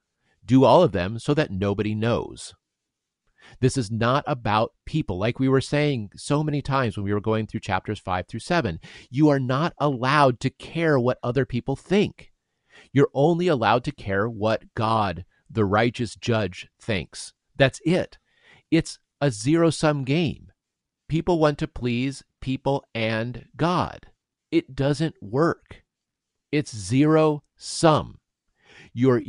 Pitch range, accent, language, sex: 110-150 Hz, American, English, male